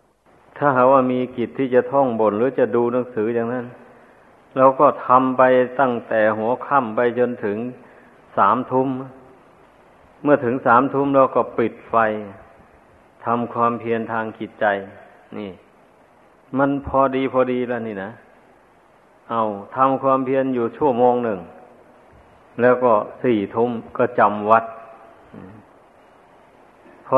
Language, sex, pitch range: Thai, male, 110-125 Hz